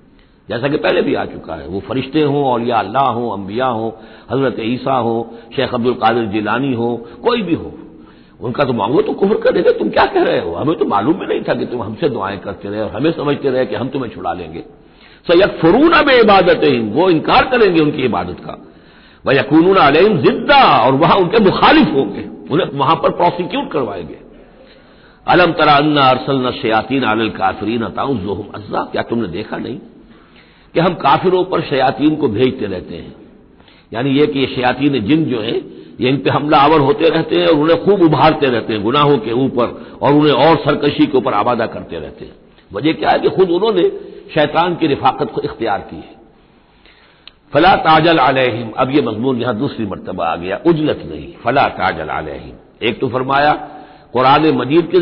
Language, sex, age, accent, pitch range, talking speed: Hindi, male, 60-79, native, 120-165 Hz, 185 wpm